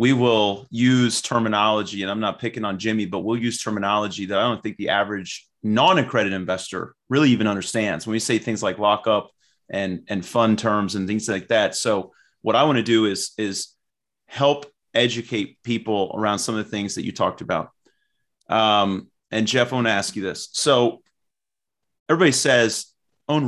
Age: 30-49